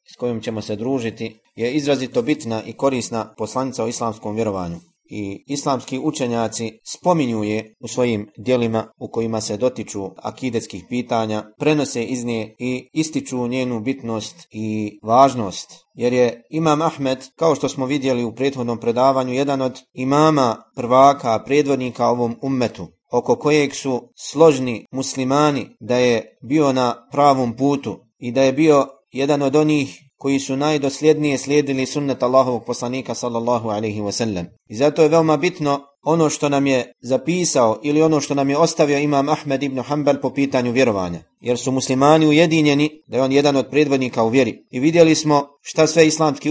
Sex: male